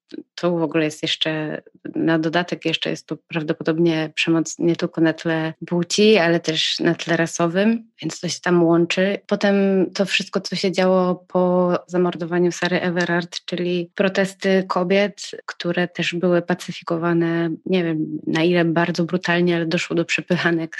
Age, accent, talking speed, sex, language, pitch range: 20-39, native, 155 wpm, female, Polish, 165-180 Hz